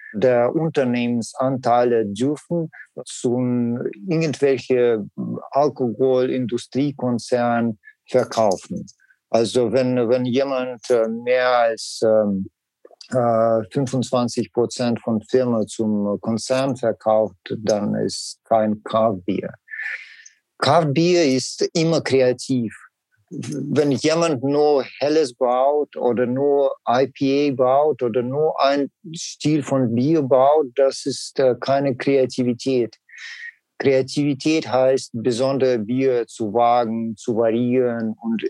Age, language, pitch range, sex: 50-69, German, 120-155 Hz, male